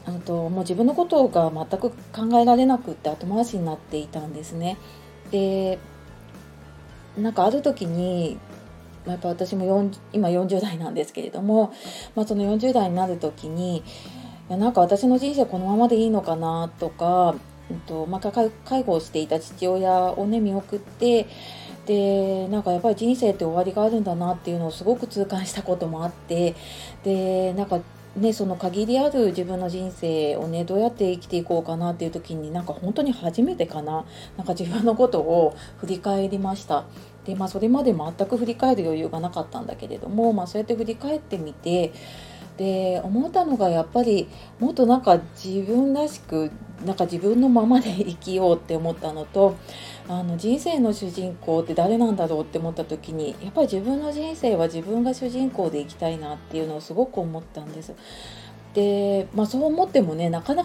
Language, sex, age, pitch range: Japanese, female, 30-49, 170-220 Hz